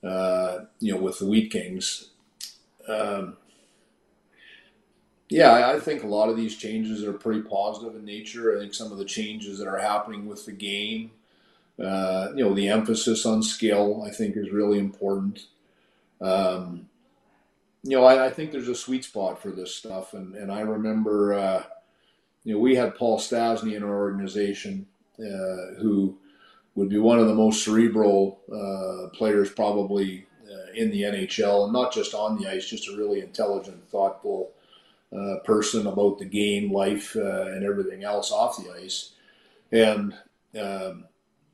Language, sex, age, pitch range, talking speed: English, male, 40-59, 100-125 Hz, 165 wpm